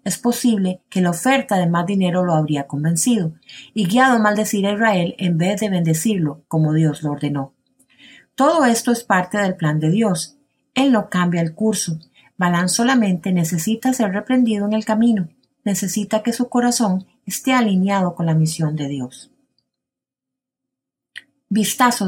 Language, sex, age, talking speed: Spanish, female, 30-49, 160 wpm